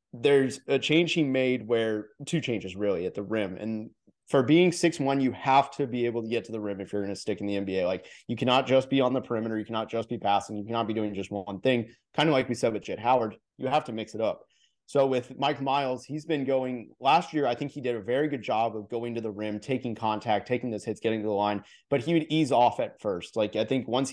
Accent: American